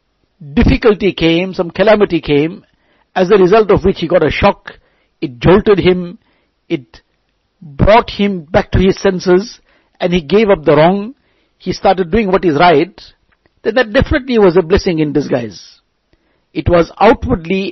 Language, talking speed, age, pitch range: English, 160 wpm, 60-79, 170-220 Hz